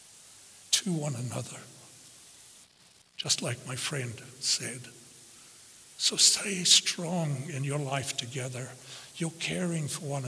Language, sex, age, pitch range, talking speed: English, male, 60-79, 135-165 Hz, 105 wpm